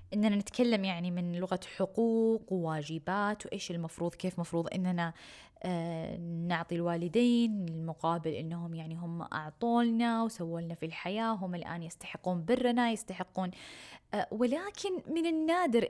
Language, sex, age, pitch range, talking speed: Arabic, female, 20-39, 175-225 Hz, 115 wpm